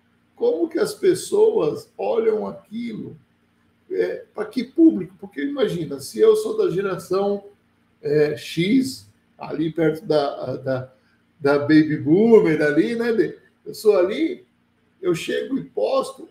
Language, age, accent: Portuguese, 60-79, Brazilian